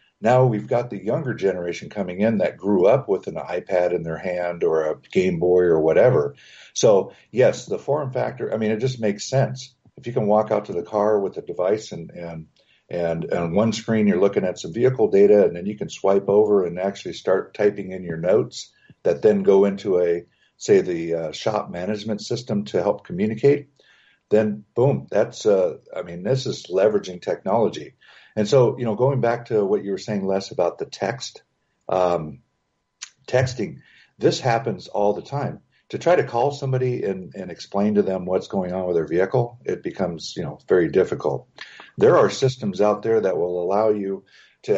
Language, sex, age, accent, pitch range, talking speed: English, male, 50-69, American, 95-135 Hz, 200 wpm